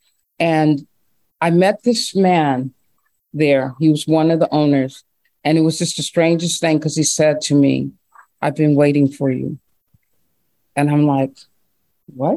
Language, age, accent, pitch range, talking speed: English, 40-59, American, 150-210 Hz, 160 wpm